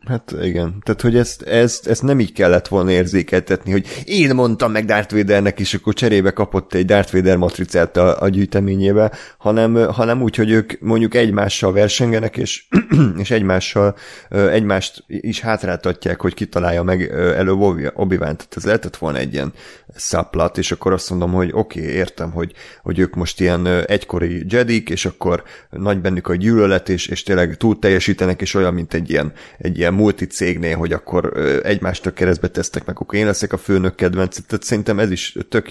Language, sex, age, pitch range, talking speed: Hungarian, male, 30-49, 90-110 Hz, 175 wpm